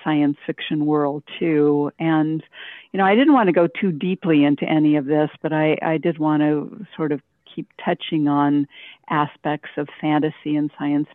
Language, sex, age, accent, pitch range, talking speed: English, female, 50-69, American, 145-175 Hz, 185 wpm